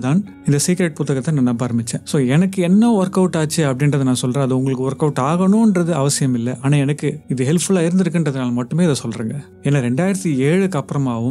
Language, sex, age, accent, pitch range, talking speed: English, male, 30-49, Indian, 130-175 Hz, 90 wpm